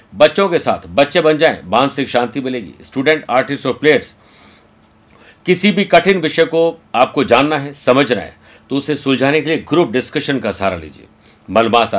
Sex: male